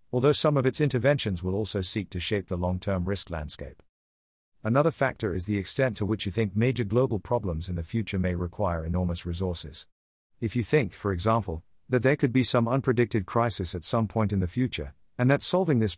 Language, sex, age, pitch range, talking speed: English, male, 50-69, 90-125 Hz, 210 wpm